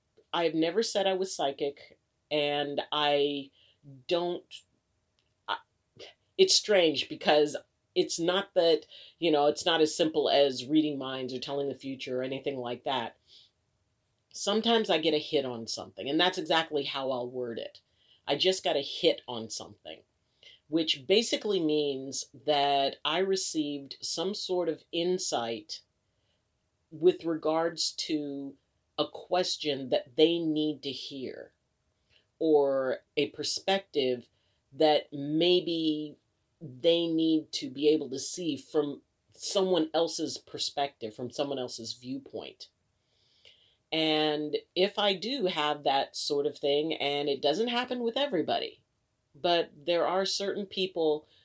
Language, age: English, 50-69